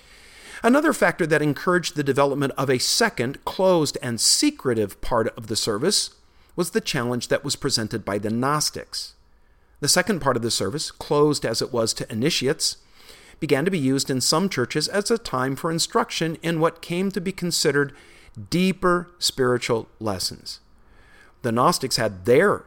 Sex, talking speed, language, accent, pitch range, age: male, 165 wpm, English, American, 125-180 Hz, 50-69